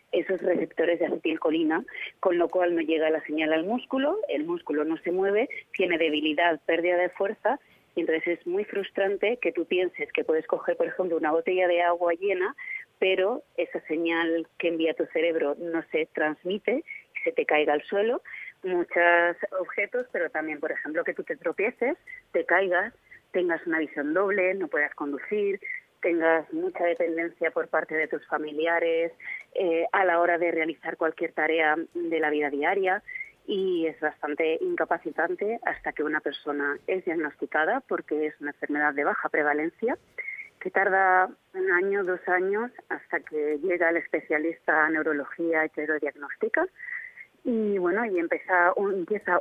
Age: 30-49